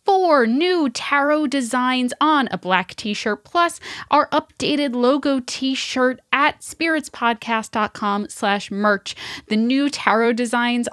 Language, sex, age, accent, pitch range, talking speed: English, female, 10-29, American, 200-265 Hz, 115 wpm